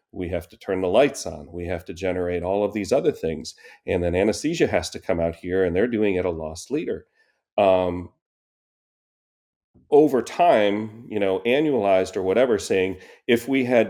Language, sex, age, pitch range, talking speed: English, male, 40-59, 90-115 Hz, 185 wpm